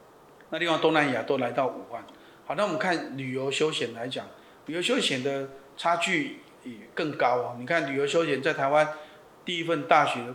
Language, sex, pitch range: Chinese, male, 135-155 Hz